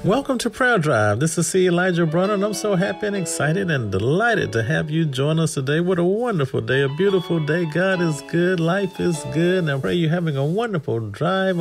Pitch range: 125-180 Hz